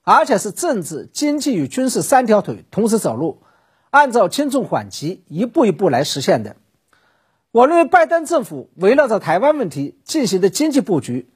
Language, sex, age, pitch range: Chinese, male, 50-69, 190-295 Hz